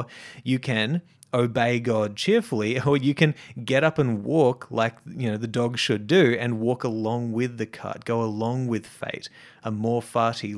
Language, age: English, 30-49